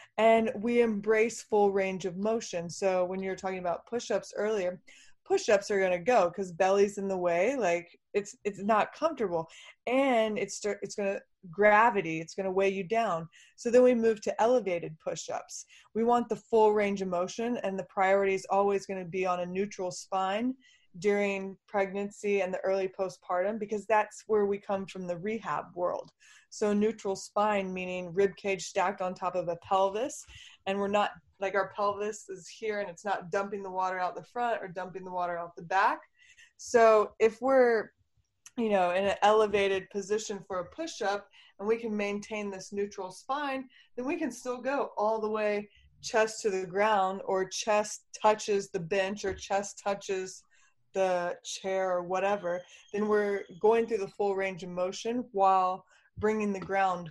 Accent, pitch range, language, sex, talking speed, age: American, 185-215 Hz, English, female, 185 wpm, 20-39